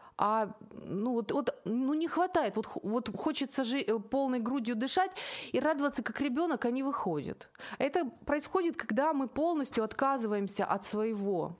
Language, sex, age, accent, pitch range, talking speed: Ukrainian, female, 30-49, native, 195-265 Hz, 150 wpm